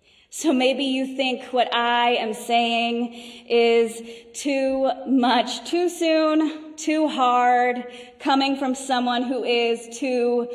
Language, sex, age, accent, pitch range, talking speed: English, female, 20-39, American, 225-250 Hz, 120 wpm